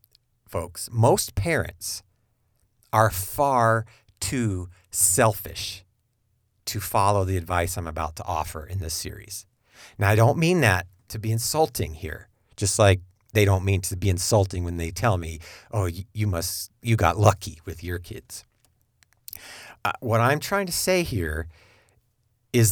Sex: male